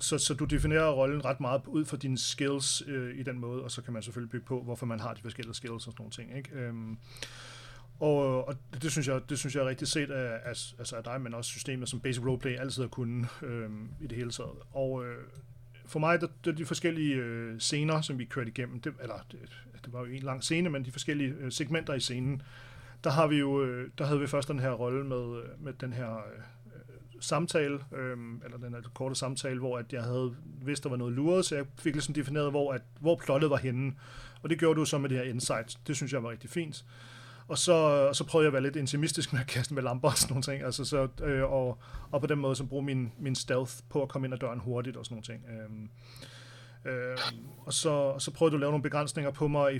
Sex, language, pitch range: male, Danish, 125-145 Hz